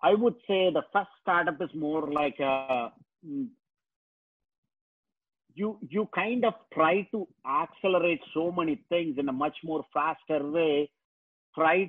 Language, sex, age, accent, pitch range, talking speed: English, male, 50-69, Indian, 150-195 Hz, 135 wpm